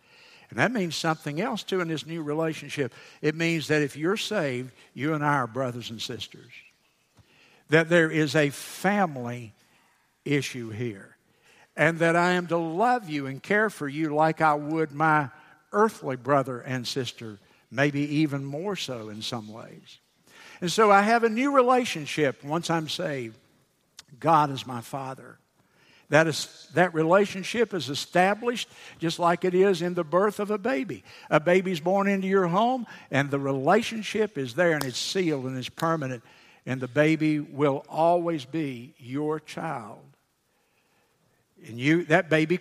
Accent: American